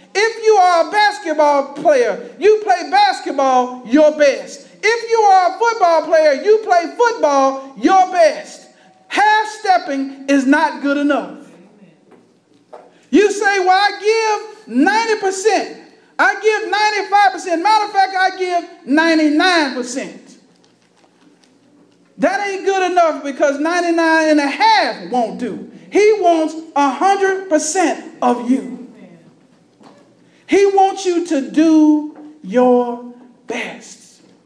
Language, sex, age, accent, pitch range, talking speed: English, male, 40-59, American, 280-390 Hz, 115 wpm